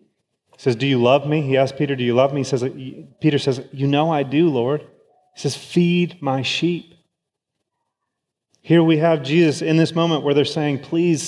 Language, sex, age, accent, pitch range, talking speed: English, male, 30-49, American, 125-155 Hz, 195 wpm